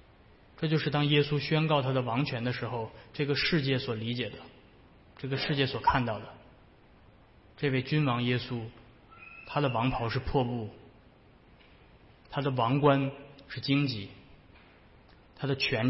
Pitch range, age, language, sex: 120-145 Hz, 20-39, Chinese, male